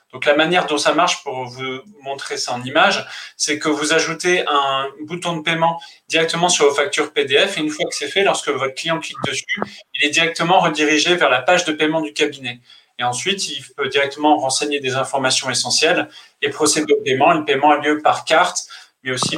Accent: French